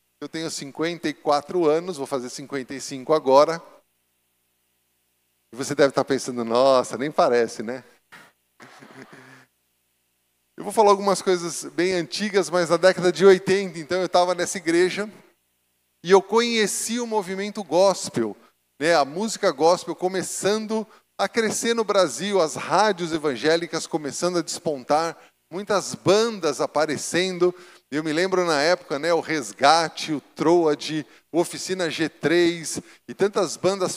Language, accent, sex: Portuguese, Brazilian, male